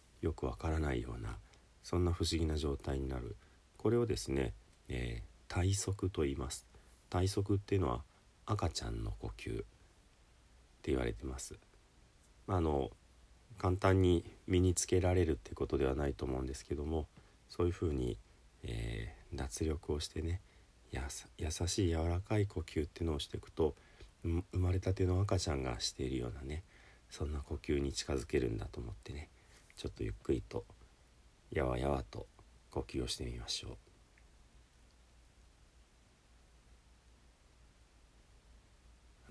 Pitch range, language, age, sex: 65-95 Hz, Japanese, 40-59, male